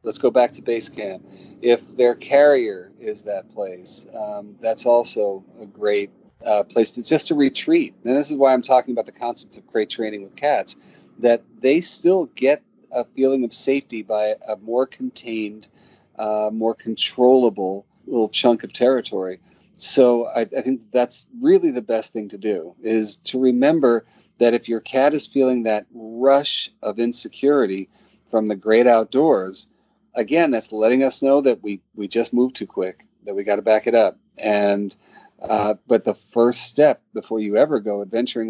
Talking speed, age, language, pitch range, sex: 180 wpm, 40-59, English, 105-130 Hz, male